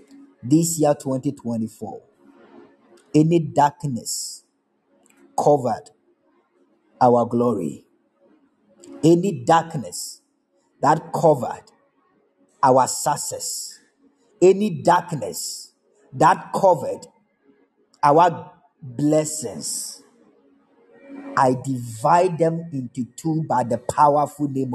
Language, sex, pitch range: Japanese, male, 140-195 Hz